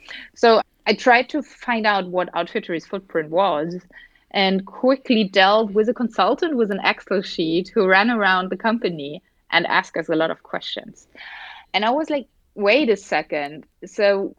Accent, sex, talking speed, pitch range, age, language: German, female, 165 wpm, 190-235 Hz, 30-49, English